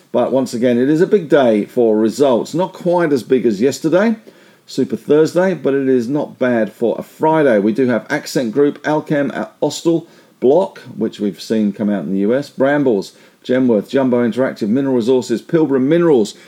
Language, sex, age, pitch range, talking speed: English, male, 50-69, 115-155 Hz, 180 wpm